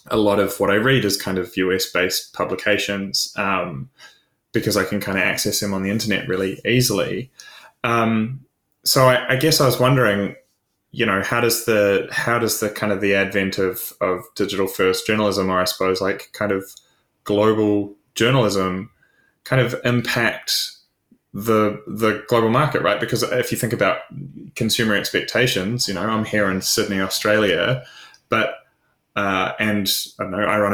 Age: 20-39